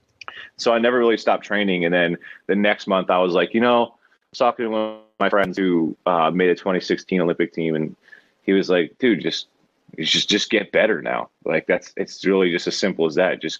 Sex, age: male, 30-49